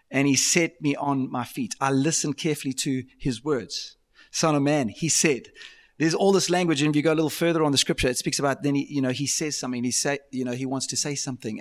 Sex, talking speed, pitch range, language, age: male, 265 wpm, 130-165 Hz, English, 30-49